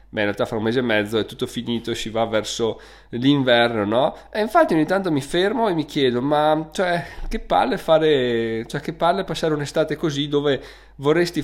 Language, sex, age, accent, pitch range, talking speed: Italian, male, 20-39, native, 115-150 Hz, 200 wpm